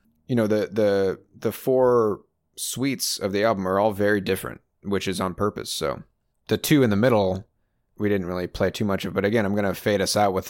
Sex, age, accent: male, 30-49, American